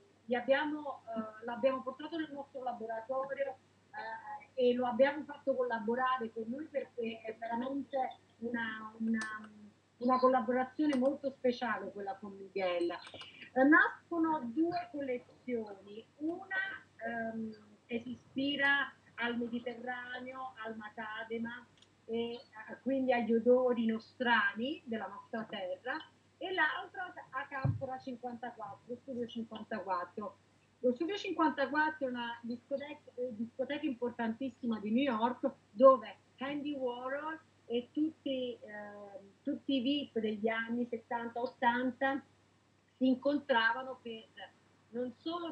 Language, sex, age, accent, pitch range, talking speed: Italian, female, 30-49, native, 225-270 Hz, 110 wpm